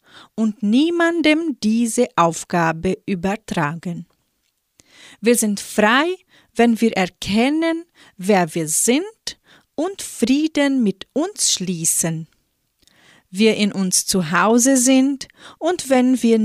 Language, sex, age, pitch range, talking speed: German, female, 40-59, 185-270 Hz, 100 wpm